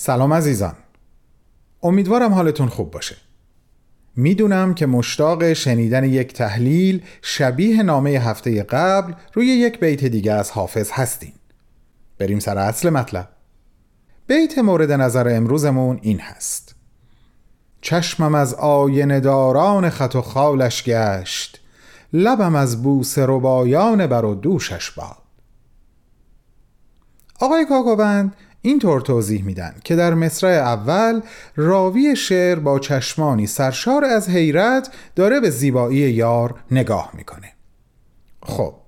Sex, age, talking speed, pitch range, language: male, 40-59, 110 wpm, 120-185 Hz, Persian